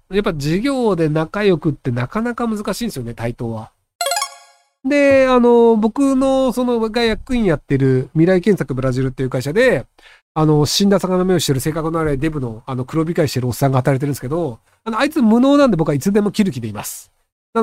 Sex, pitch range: male, 135-190 Hz